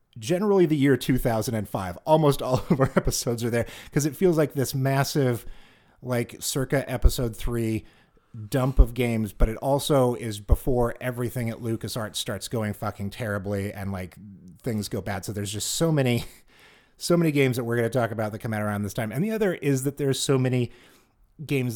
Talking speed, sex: 195 wpm, male